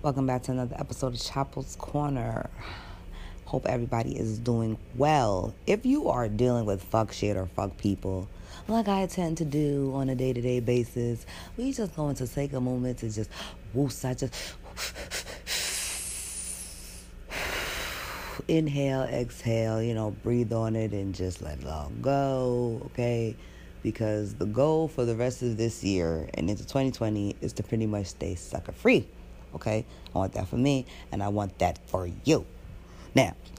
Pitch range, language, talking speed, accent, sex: 100-140 Hz, English, 160 wpm, American, female